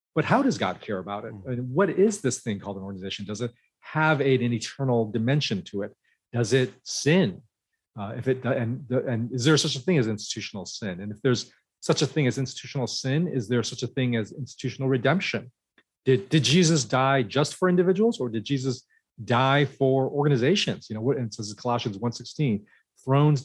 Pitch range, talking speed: 110-145 Hz, 205 wpm